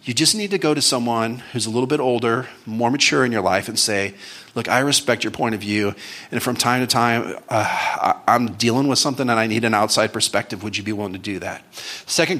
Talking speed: 240 wpm